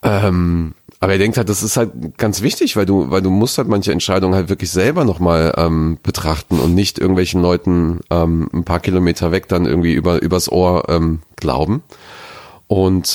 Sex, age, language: male, 40-59, German